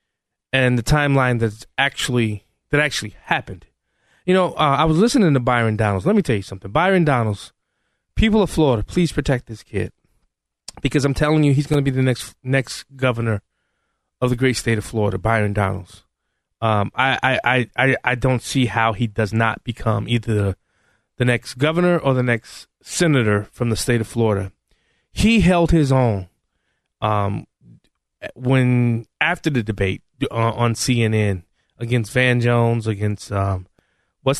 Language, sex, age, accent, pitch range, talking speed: English, male, 20-39, American, 110-135 Hz, 165 wpm